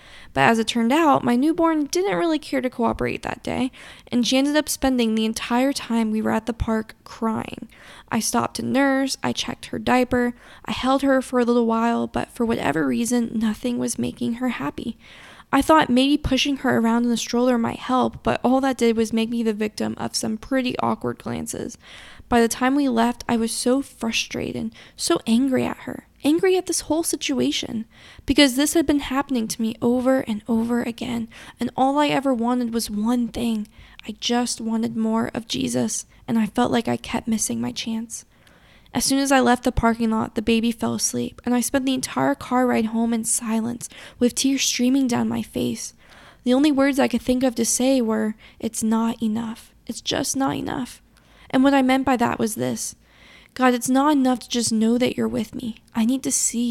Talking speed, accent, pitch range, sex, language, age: 210 wpm, American, 230-265 Hz, female, English, 10-29